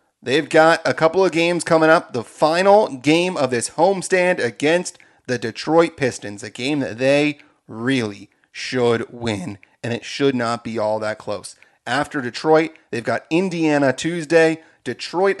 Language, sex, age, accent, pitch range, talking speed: English, male, 30-49, American, 115-145 Hz, 155 wpm